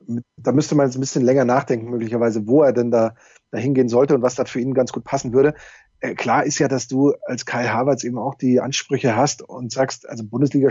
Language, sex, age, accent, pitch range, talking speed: German, male, 30-49, German, 120-140 Hz, 230 wpm